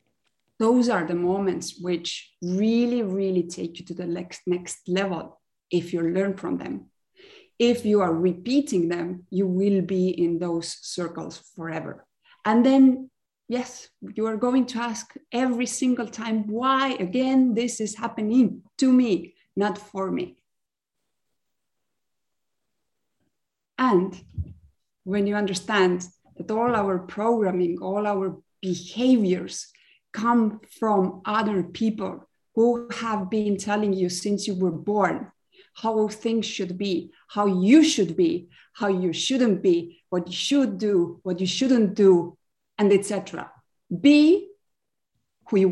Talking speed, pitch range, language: 135 wpm, 180-230 Hz, English